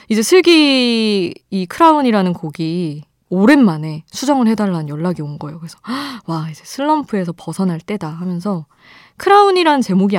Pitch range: 165-235 Hz